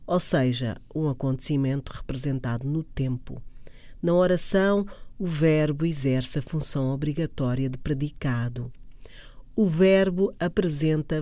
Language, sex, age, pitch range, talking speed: Portuguese, female, 40-59, 135-190 Hz, 105 wpm